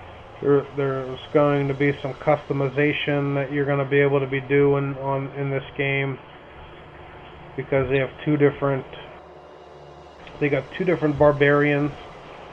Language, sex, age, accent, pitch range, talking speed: English, male, 30-49, American, 130-145 Hz, 145 wpm